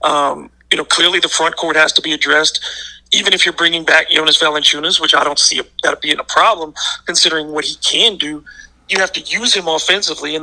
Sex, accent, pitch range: male, American, 155-180 Hz